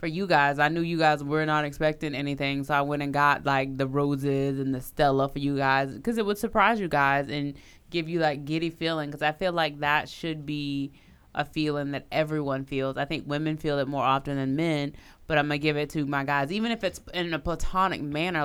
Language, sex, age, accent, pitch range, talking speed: English, female, 20-39, American, 140-160 Hz, 240 wpm